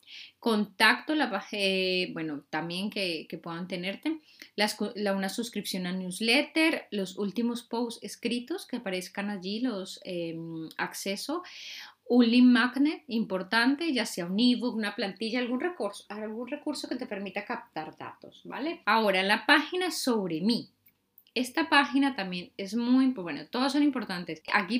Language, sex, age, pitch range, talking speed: Spanish, female, 20-39, 190-255 Hz, 145 wpm